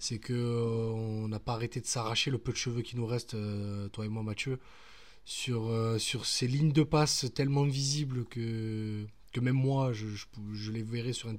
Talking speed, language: 200 wpm, French